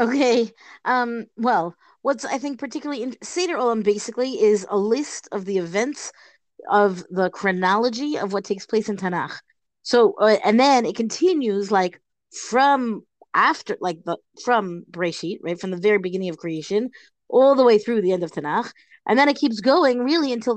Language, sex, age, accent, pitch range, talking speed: English, female, 30-49, American, 195-245 Hz, 180 wpm